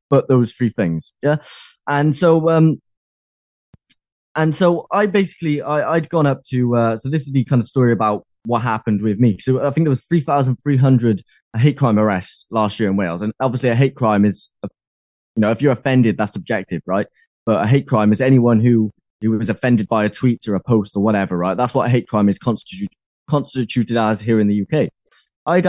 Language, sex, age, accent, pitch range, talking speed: English, male, 10-29, British, 105-135 Hz, 215 wpm